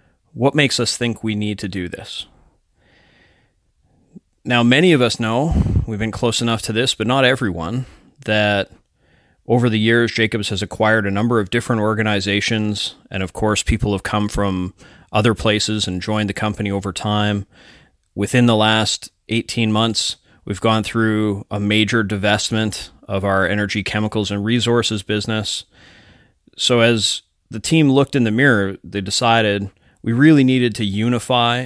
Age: 30-49